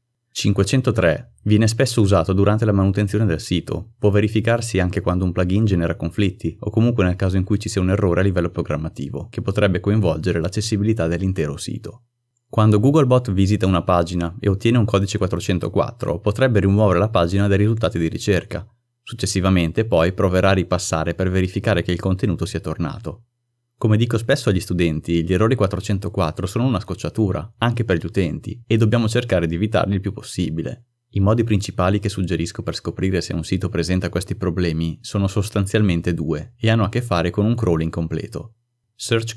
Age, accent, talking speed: 30-49, native, 175 wpm